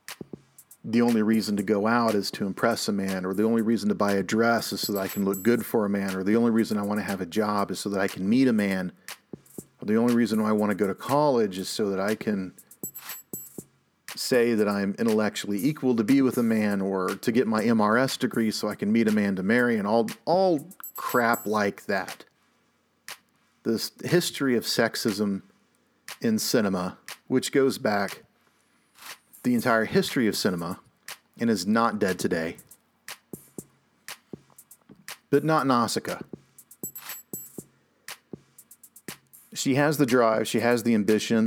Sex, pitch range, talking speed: male, 100-125 Hz, 180 wpm